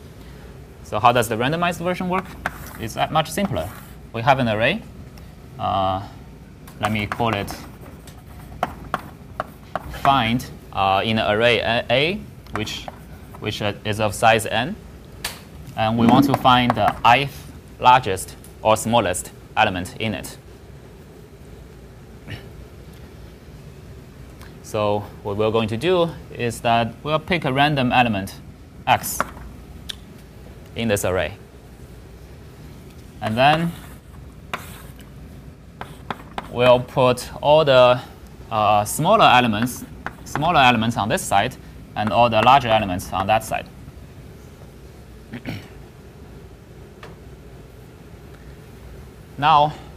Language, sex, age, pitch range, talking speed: English, male, 20-39, 100-125 Hz, 100 wpm